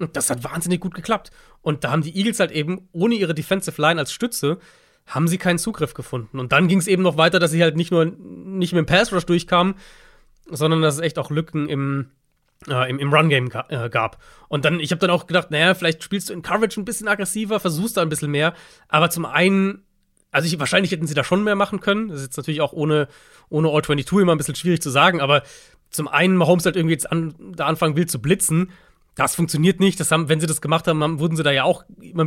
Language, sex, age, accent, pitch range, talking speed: German, male, 30-49, German, 150-180 Hz, 245 wpm